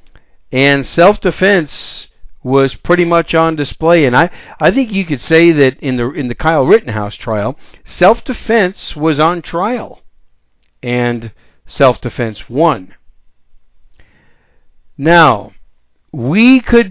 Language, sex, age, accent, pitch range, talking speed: English, male, 50-69, American, 110-165 Hz, 110 wpm